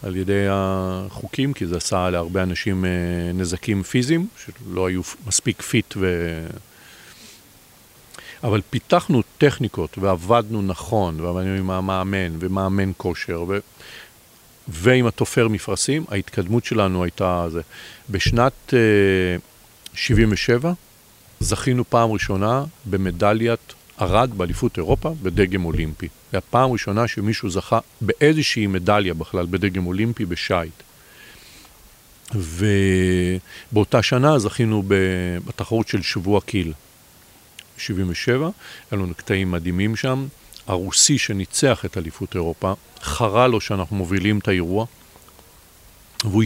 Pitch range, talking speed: 95-115 Hz, 100 wpm